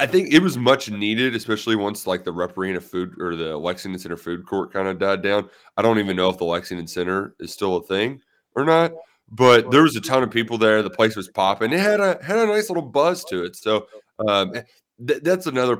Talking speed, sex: 235 wpm, male